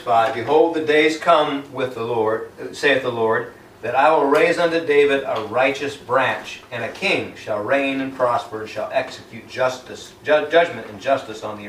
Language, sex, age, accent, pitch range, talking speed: English, male, 50-69, American, 120-150 Hz, 180 wpm